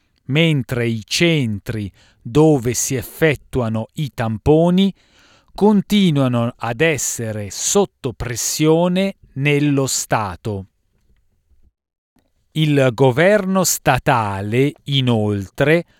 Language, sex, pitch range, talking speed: Italian, male, 110-165 Hz, 70 wpm